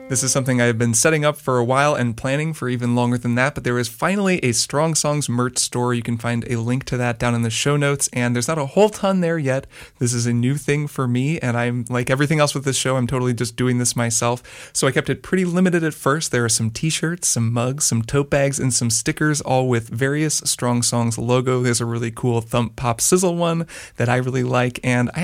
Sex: male